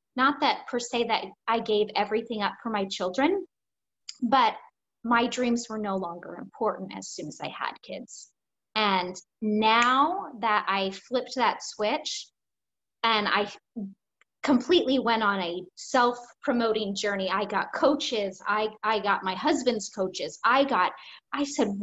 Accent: American